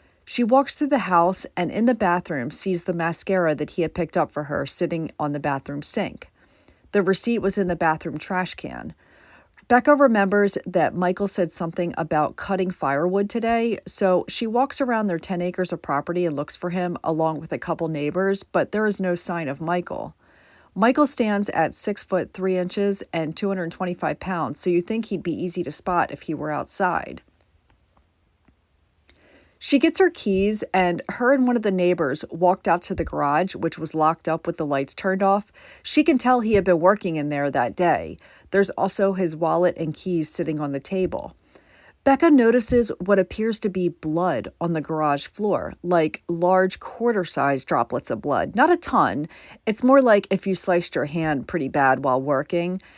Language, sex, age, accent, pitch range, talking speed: English, female, 40-59, American, 160-205 Hz, 190 wpm